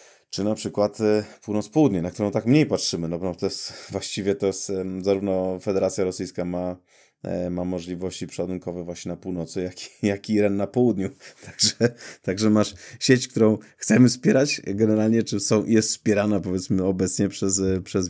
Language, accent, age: Polish, native, 30-49